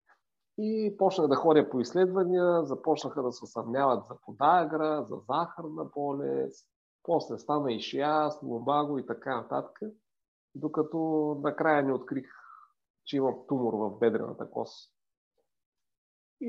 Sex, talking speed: male, 125 wpm